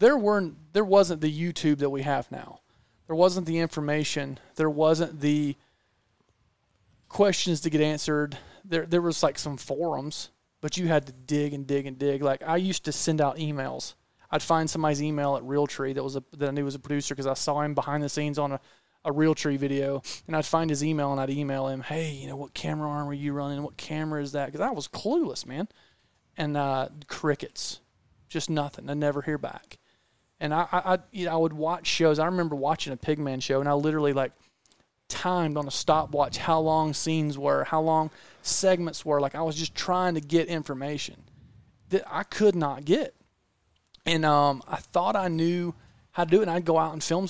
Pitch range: 145-170 Hz